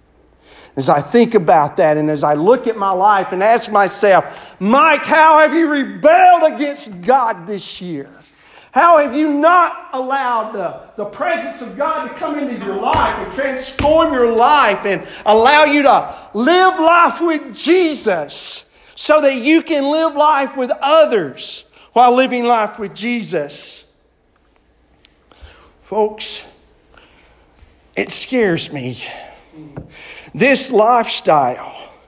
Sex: male